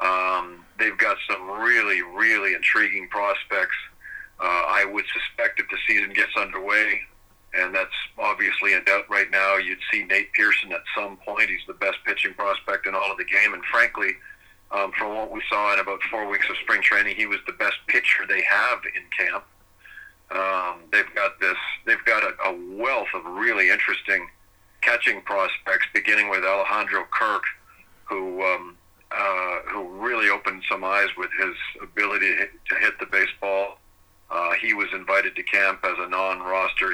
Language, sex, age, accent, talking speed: English, male, 40-59, American, 175 wpm